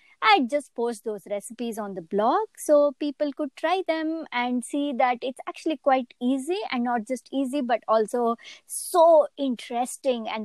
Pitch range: 215-285 Hz